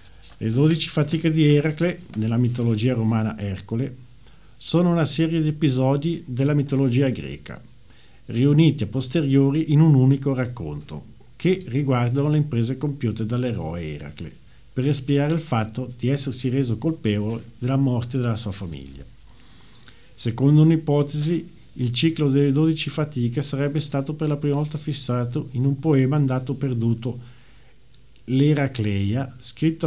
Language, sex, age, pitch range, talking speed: Italian, male, 50-69, 115-145 Hz, 130 wpm